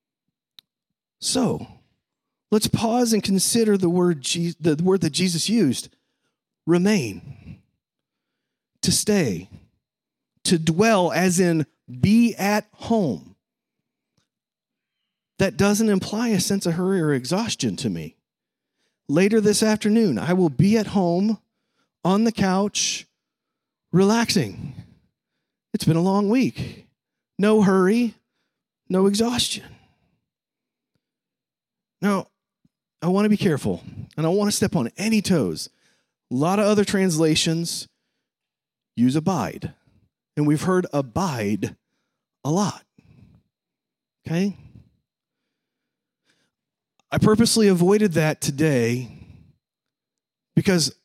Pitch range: 165-210 Hz